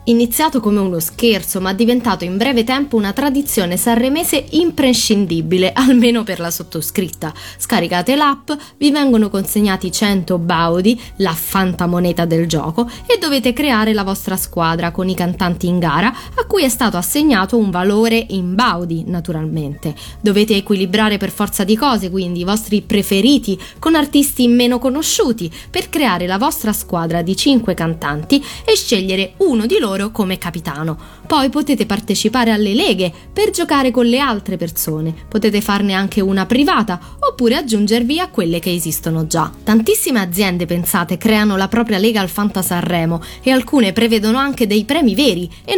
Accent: native